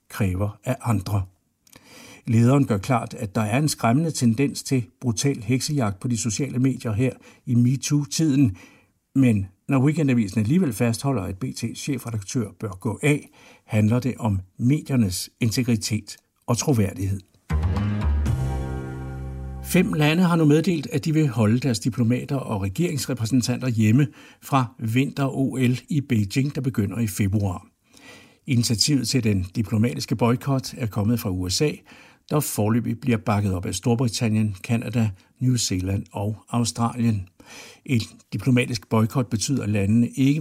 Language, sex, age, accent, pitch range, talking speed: Danish, male, 60-79, native, 105-135 Hz, 135 wpm